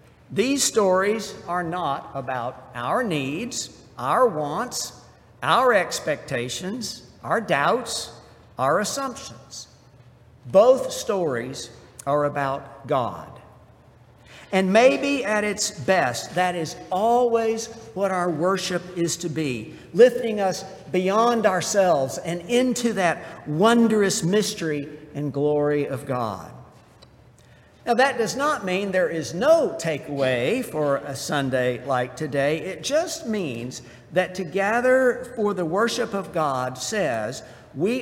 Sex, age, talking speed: male, 60-79, 115 wpm